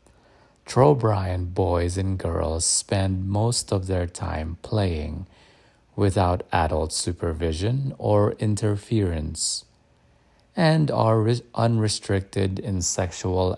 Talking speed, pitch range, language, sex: 90 wpm, 85-105 Hz, English, male